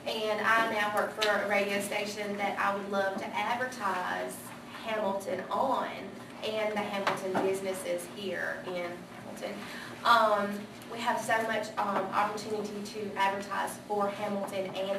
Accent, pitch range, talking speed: American, 190-210 Hz, 140 wpm